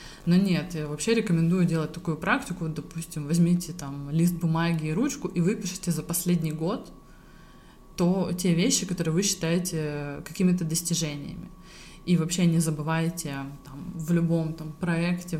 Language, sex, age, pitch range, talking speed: Russian, female, 20-39, 160-185 Hz, 145 wpm